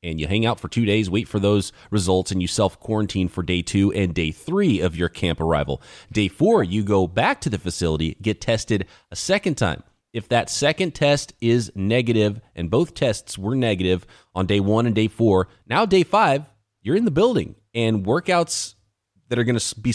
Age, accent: 30-49, American